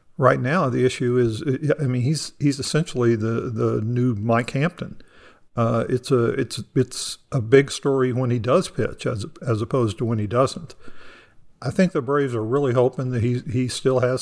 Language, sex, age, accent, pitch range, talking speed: English, male, 50-69, American, 115-145 Hz, 185 wpm